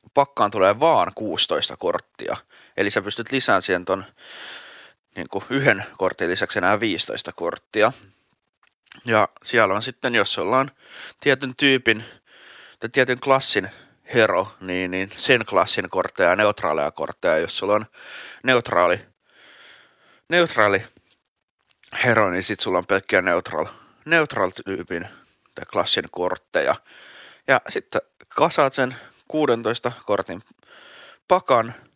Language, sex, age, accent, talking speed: Finnish, male, 30-49, native, 115 wpm